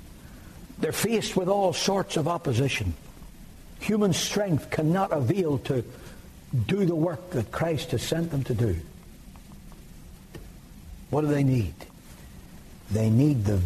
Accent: American